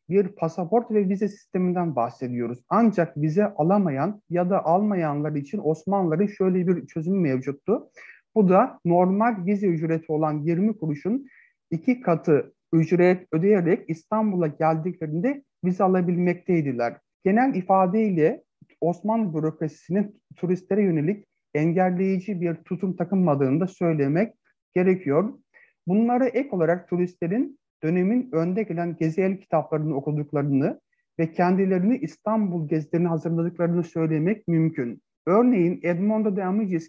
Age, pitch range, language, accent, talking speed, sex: 50-69, 160-195 Hz, Turkish, native, 110 wpm, male